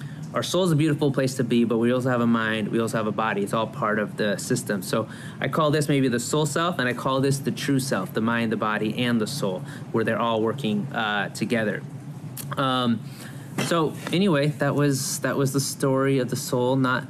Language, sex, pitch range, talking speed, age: English, male, 120-145 Hz, 230 wpm, 20-39